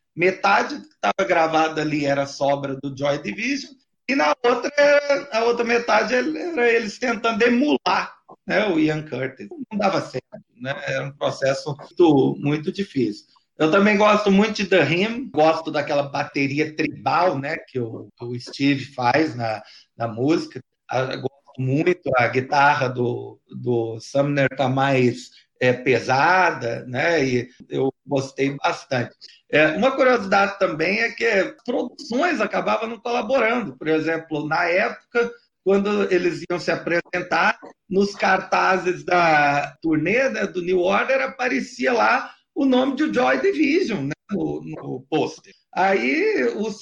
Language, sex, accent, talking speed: Portuguese, male, Brazilian, 140 wpm